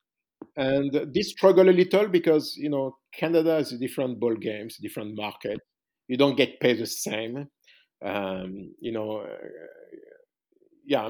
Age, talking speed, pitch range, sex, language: 50-69, 130 wpm, 110-150 Hz, male, English